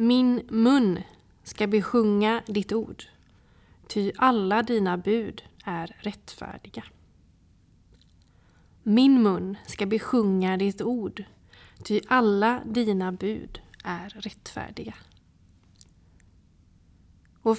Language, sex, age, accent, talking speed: Swedish, female, 30-49, native, 85 wpm